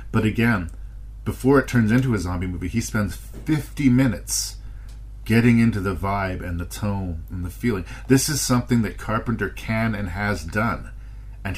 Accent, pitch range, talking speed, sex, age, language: American, 95-110 Hz, 170 wpm, male, 40-59, English